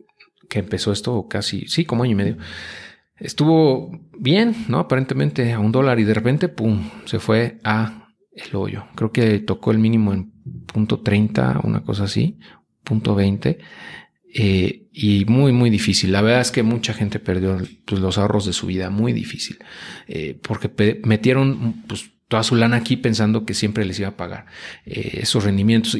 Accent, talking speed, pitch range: Mexican, 175 wpm, 105-120 Hz